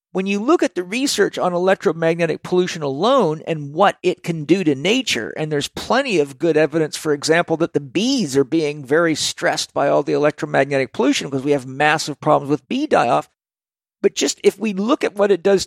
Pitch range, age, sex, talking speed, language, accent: 140-180 Hz, 50-69, male, 210 wpm, English, American